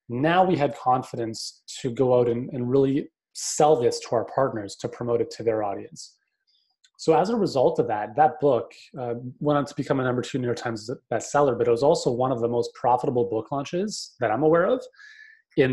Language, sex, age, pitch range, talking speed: English, male, 30-49, 115-155 Hz, 220 wpm